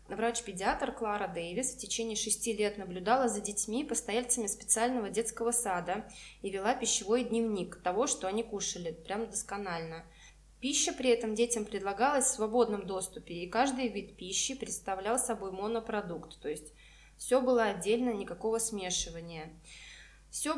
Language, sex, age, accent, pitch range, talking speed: Russian, female, 20-39, native, 190-240 Hz, 135 wpm